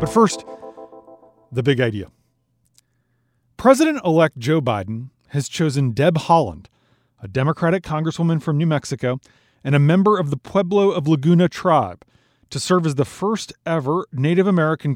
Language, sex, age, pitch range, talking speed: English, male, 30-49, 125-175 Hz, 135 wpm